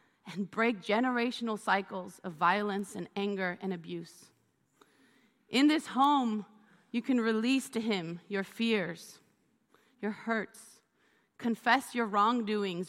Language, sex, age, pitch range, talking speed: English, female, 30-49, 190-230 Hz, 115 wpm